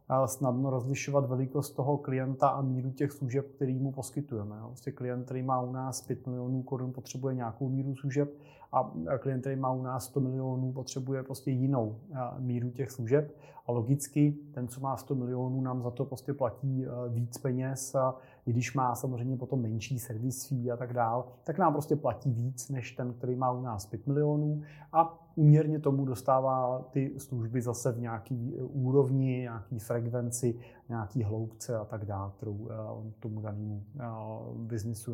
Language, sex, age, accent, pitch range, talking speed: Czech, male, 30-49, native, 125-145 Hz, 165 wpm